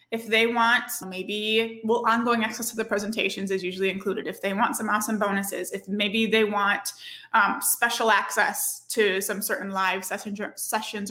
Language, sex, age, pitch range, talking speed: English, female, 20-39, 210-255 Hz, 175 wpm